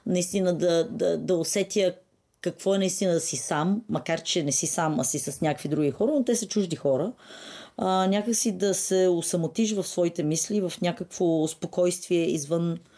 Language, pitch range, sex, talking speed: Bulgarian, 155-195 Hz, female, 185 wpm